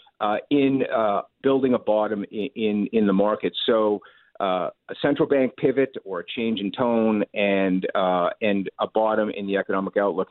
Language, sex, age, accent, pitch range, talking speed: English, male, 50-69, American, 105-130 Hz, 180 wpm